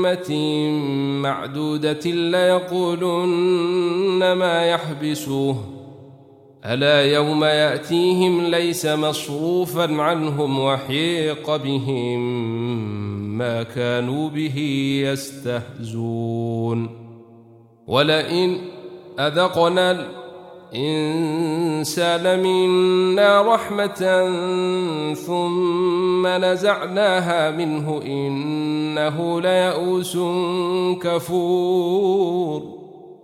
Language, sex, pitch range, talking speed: Arabic, male, 150-180 Hz, 50 wpm